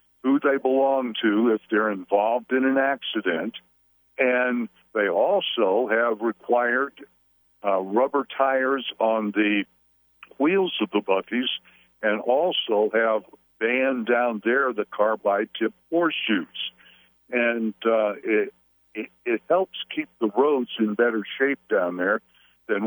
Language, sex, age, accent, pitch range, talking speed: English, male, 60-79, American, 100-125 Hz, 130 wpm